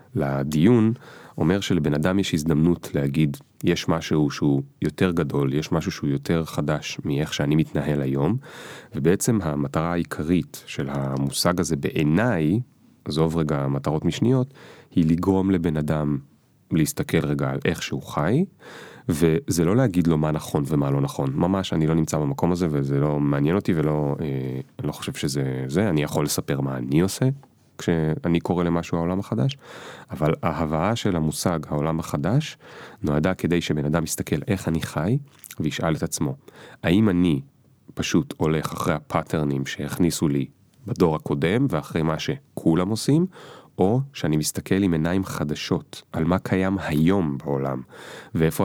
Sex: male